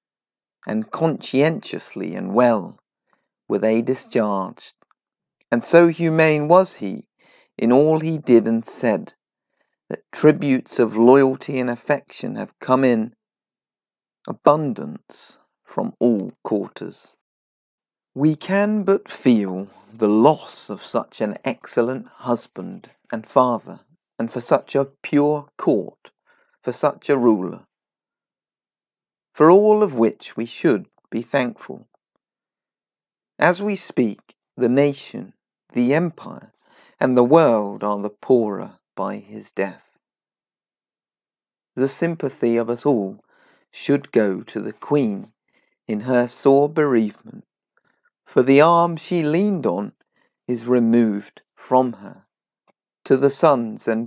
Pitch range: 115-160 Hz